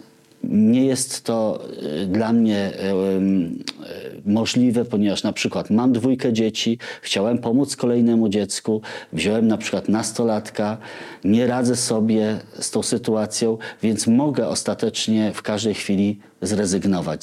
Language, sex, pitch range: Polish, male, 105-125 Hz